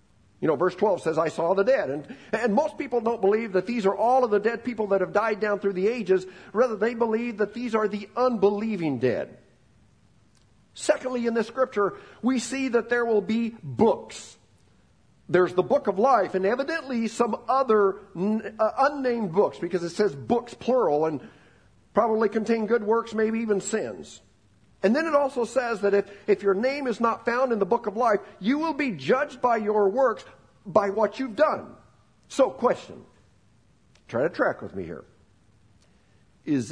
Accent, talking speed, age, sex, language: American, 185 wpm, 50-69, male, English